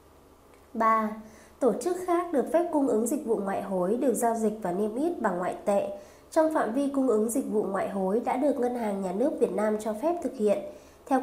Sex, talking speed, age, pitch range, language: female, 230 wpm, 20-39, 210-280 Hz, Vietnamese